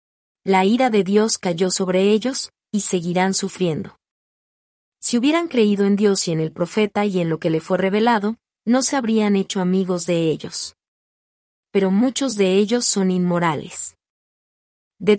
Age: 30-49